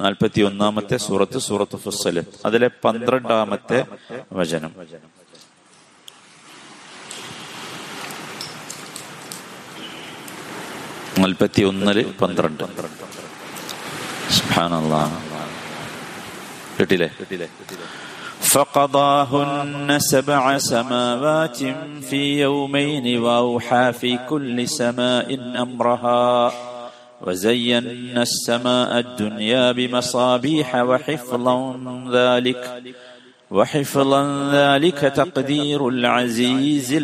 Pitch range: 115-135 Hz